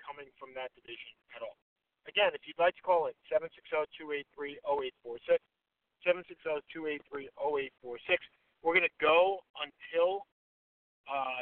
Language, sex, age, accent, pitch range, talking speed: English, male, 50-69, American, 140-195 Hz, 110 wpm